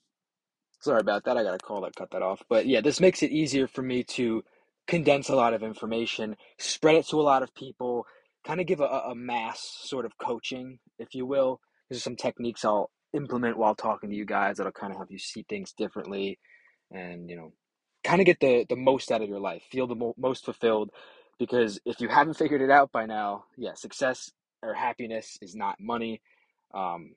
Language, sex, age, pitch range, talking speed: English, male, 20-39, 105-135 Hz, 215 wpm